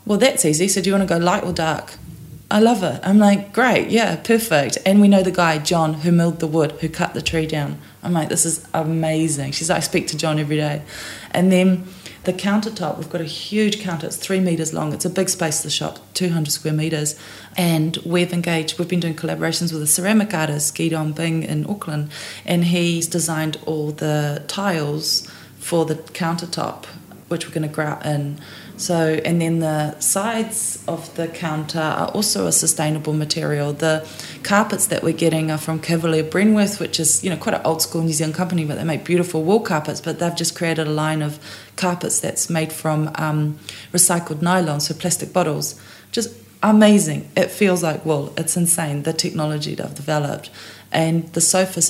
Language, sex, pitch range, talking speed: English, female, 155-180 Hz, 200 wpm